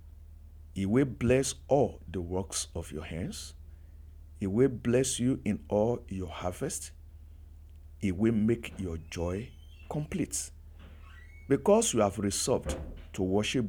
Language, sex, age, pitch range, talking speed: English, male, 50-69, 75-105 Hz, 125 wpm